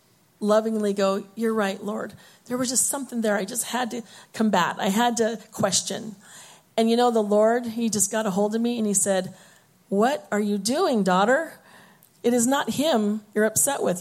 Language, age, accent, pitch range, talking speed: English, 40-59, American, 190-225 Hz, 195 wpm